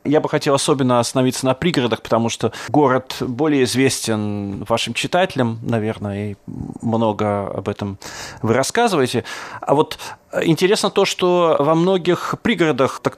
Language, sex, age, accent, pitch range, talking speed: Russian, male, 30-49, native, 120-170 Hz, 135 wpm